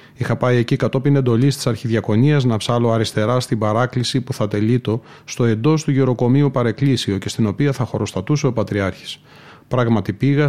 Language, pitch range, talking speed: Greek, 115-140 Hz, 165 wpm